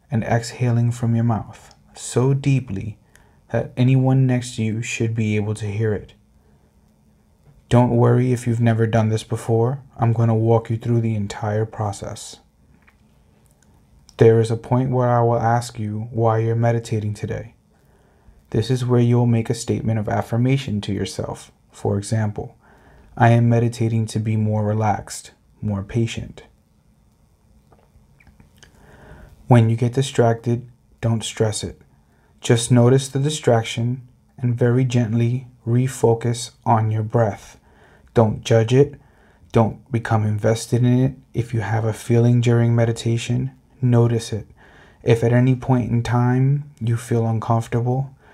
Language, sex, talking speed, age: English, male, 140 wpm, 30-49